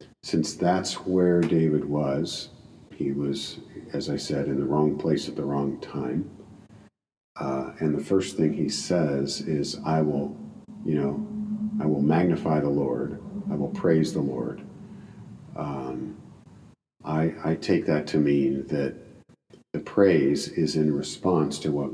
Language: English